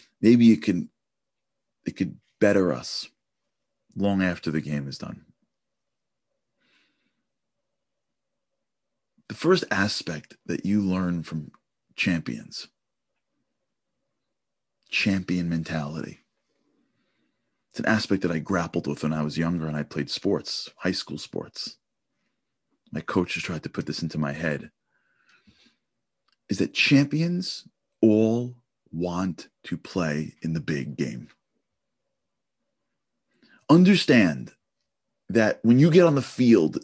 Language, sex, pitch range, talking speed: English, male, 90-140 Hz, 110 wpm